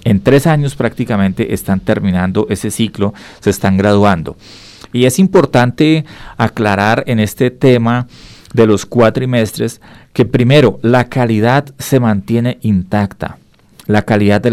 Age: 40-59